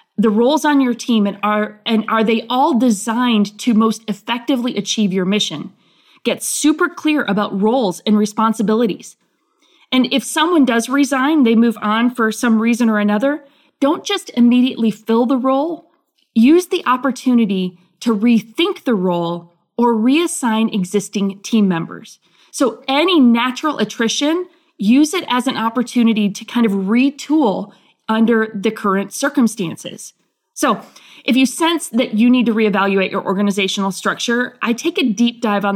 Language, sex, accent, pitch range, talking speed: English, female, American, 205-255 Hz, 155 wpm